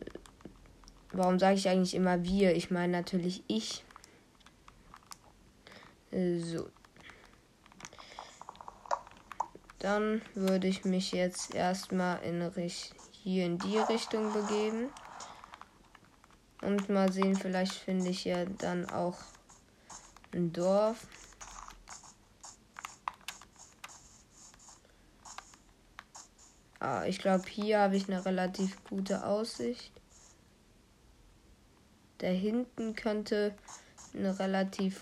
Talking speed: 85 wpm